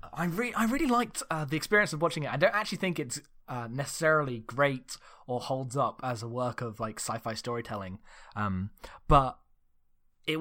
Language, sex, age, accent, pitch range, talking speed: English, male, 10-29, British, 125-165 Hz, 185 wpm